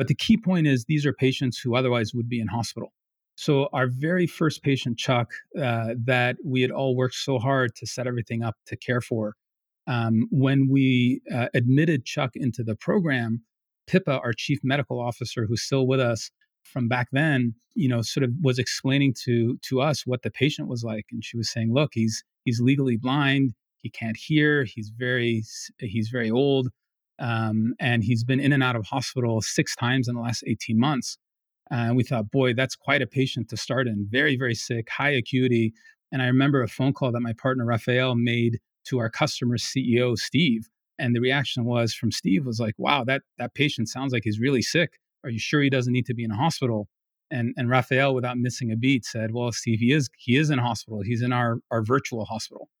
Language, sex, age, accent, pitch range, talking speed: English, male, 40-59, American, 115-135 Hz, 215 wpm